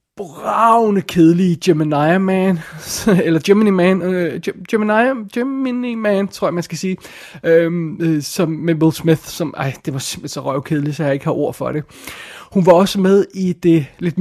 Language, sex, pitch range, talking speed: Danish, male, 155-200 Hz, 175 wpm